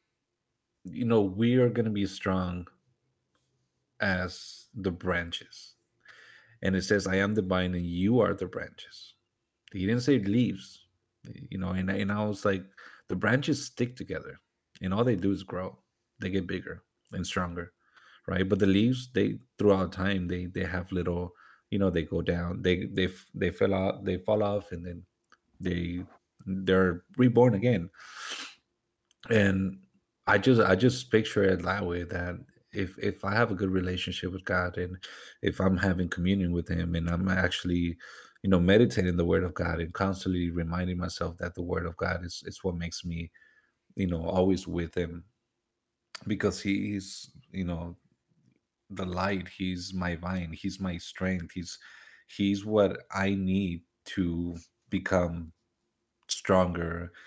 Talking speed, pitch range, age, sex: 160 wpm, 90-100 Hz, 30-49, male